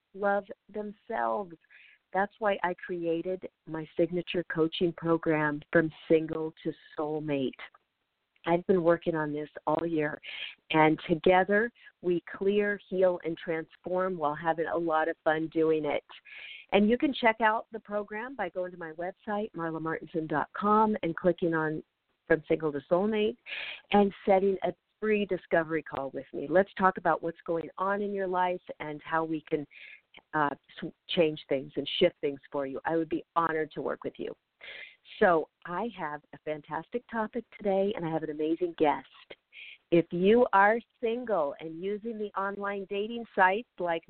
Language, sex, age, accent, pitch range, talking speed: English, female, 50-69, American, 160-205 Hz, 160 wpm